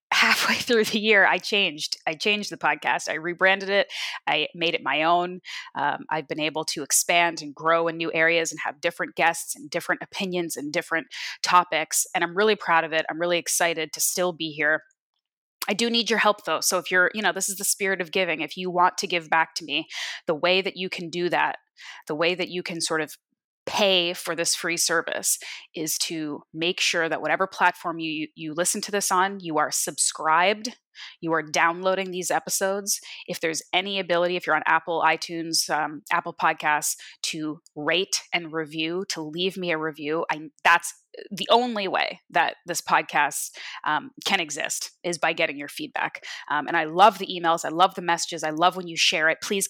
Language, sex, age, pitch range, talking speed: English, female, 20-39, 160-190 Hz, 205 wpm